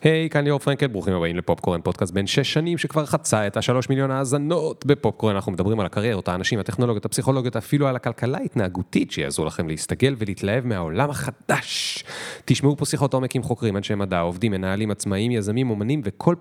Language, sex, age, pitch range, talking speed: Hebrew, male, 30-49, 90-135 Hz, 185 wpm